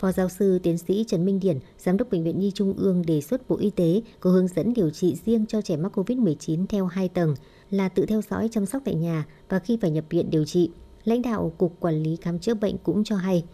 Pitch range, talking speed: 170-210 Hz, 260 wpm